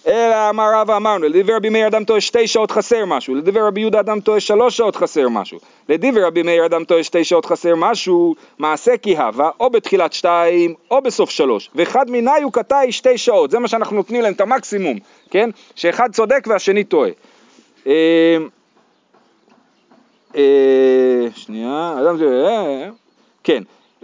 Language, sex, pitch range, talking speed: Hebrew, male, 170-235 Hz, 165 wpm